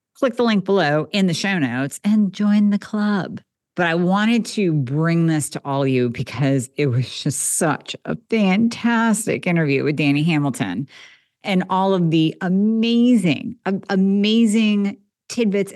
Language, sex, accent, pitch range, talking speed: English, female, American, 150-205 Hz, 150 wpm